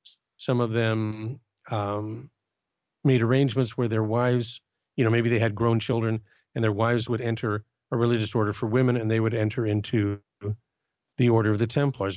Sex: male